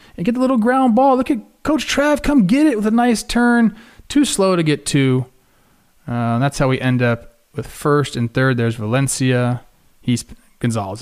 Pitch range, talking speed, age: 130-205 Hz, 195 wpm, 30-49